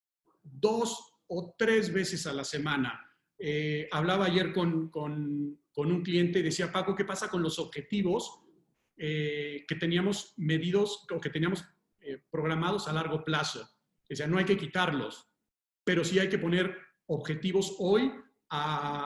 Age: 40-59